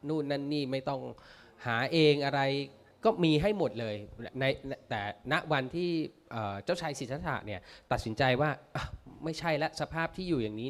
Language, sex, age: Thai, male, 20-39